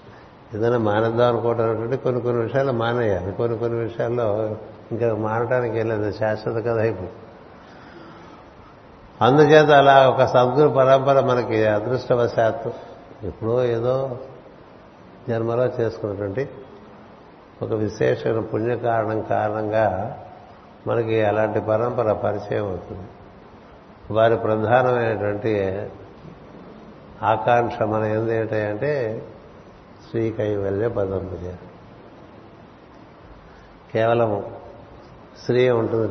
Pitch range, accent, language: 100-120 Hz, native, Telugu